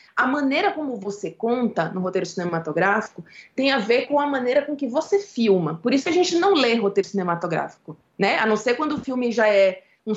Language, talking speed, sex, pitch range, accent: Portuguese, 210 wpm, female, 200-275 Hz, Brazilian